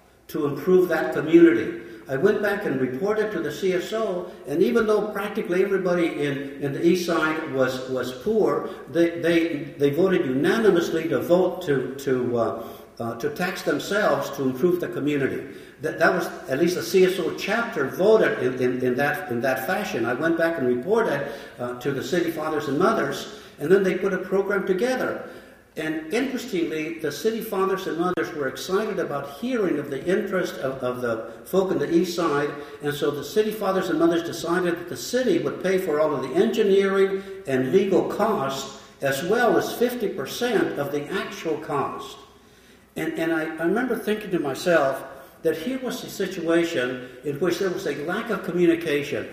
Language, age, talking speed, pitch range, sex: English, 60-79, 180 wpm, 140-195 Hz, male